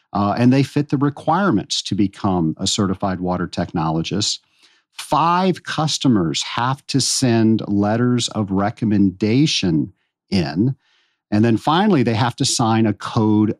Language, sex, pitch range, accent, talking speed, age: English, male, 100-140 Hz, American, 130 wpm, 50-69